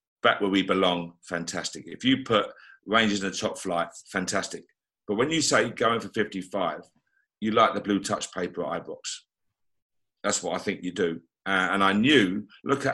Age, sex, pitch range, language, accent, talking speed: 50-69, male, 95-115 Hz, English, British, 185 wpm